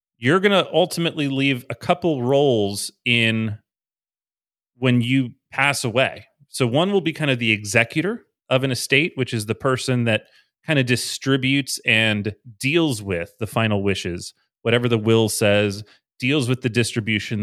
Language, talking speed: English, 160 wpm